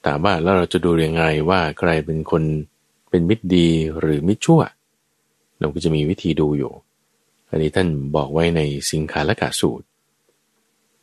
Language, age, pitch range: Thai, 20-39, 75-100 Hz